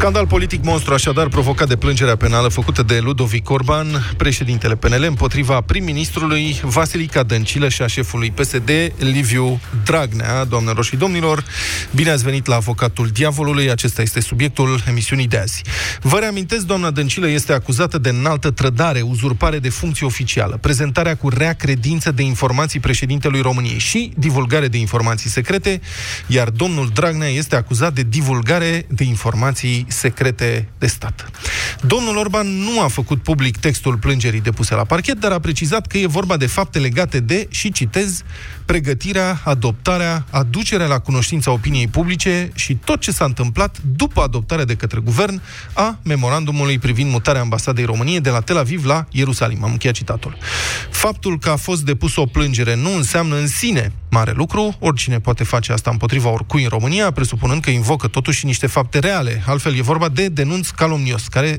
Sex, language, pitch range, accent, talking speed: male, Romanian, 120-155 Hz, native, 160 wpm